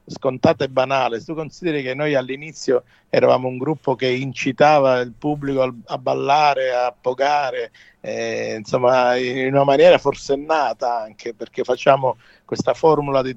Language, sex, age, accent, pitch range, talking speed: English, male, 50-69, Italian, 130-165 Hz, 150 wpm